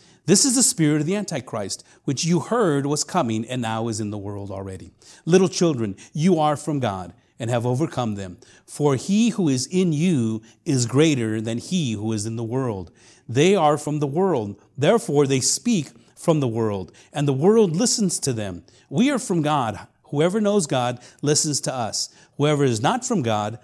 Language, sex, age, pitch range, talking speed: English, male, 40-59, 115-160 Hz, 195 wpm